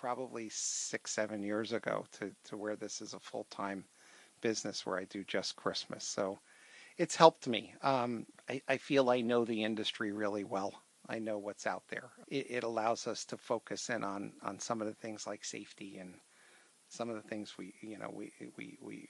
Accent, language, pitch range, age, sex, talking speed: American, English, 105-130 Hz, 40-59, male, 200 wpm